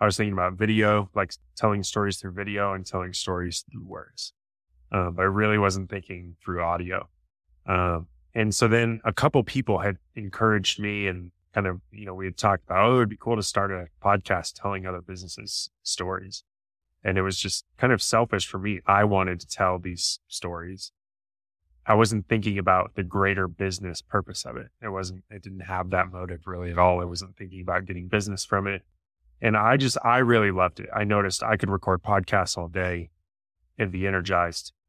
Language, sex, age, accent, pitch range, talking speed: English, male, 20-39, American, 90-105 Hz, 200 wpm